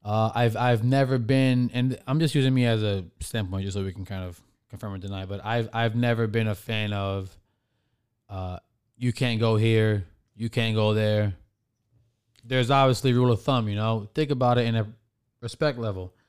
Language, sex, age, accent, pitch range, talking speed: English, male, 20-39, American, 110-130 Hz, 195 wpm